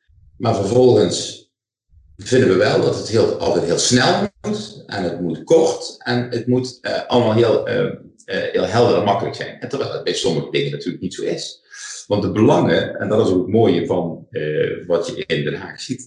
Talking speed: 205 wpm